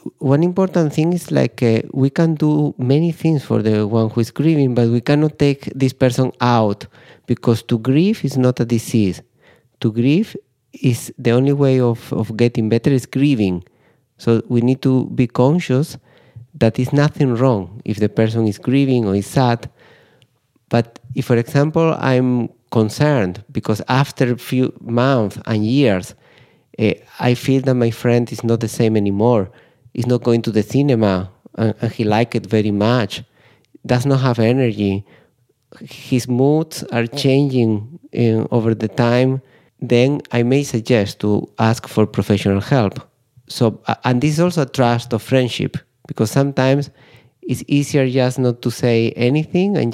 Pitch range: 115-140 Hz